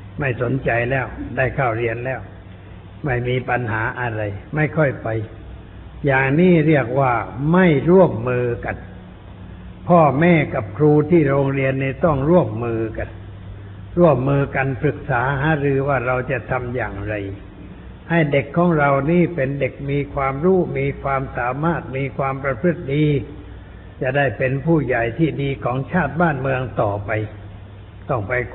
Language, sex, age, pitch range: Thai, male, 60-79, 105-145 Hz